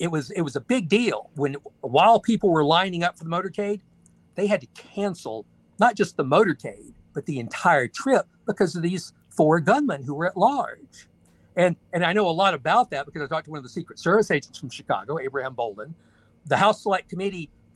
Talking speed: 215 wpm